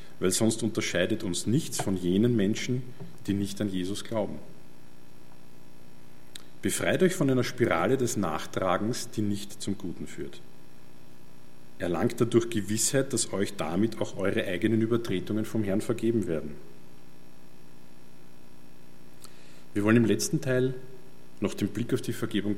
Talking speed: 135 wpm